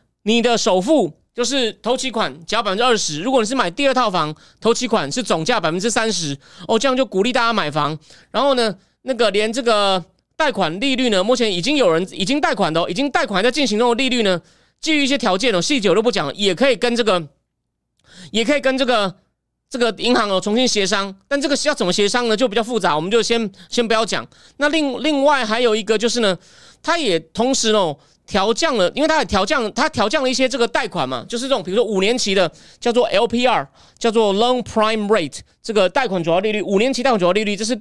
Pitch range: 195-260 Hz